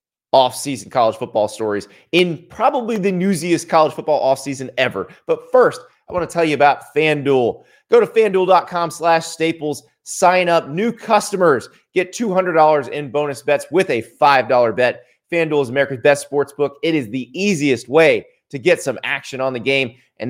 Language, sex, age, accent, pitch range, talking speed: English, male, 30-49, American, 140-195 Hz, 170 wpm